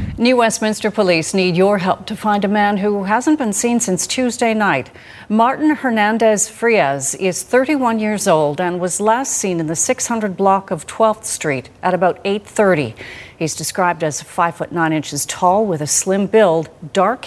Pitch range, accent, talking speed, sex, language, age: 160-215 Hz, American, 175 wpm, female, English, 40-59